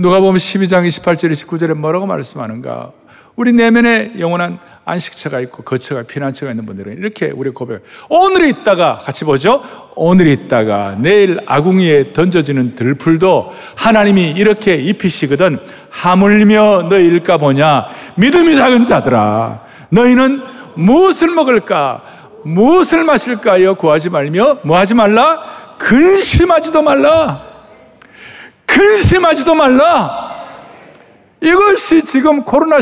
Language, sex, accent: Korean, male, native